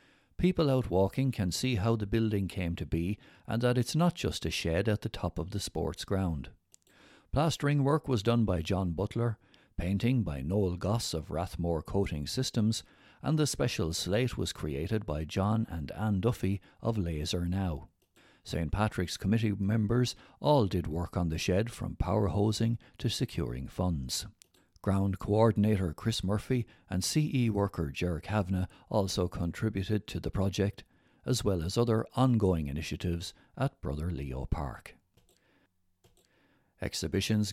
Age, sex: 60-79, male